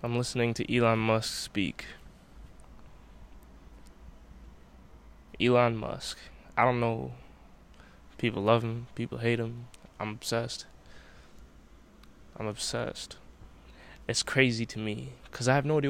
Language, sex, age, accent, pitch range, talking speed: English, male, 20-39, American, 95-135 Hz, 115 wpm